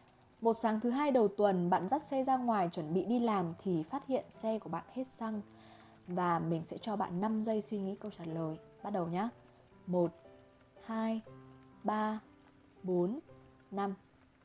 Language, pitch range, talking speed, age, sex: Vietnamese, 175-255 Hz, 180 wpm, 20-39, female